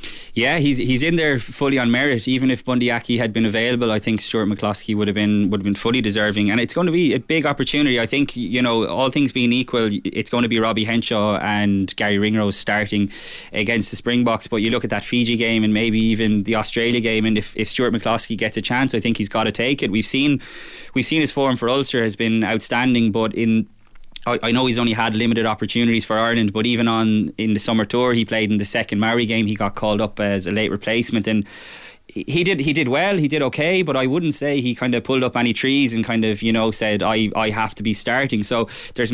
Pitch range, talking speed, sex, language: 110-125 Hz, 245 wpm, male, English